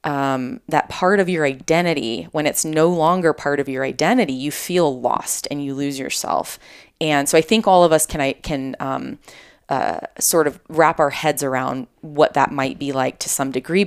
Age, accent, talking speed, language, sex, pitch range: 30-49, American, 205 wpm, English, female, 140-175 Hz